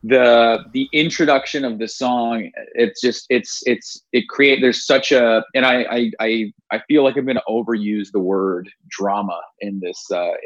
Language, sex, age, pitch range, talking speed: English, male, 20-39, 105-120 Hz, 185 wpm